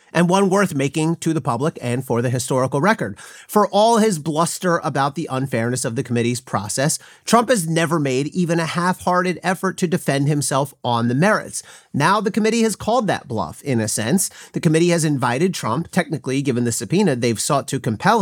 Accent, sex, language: American, male, English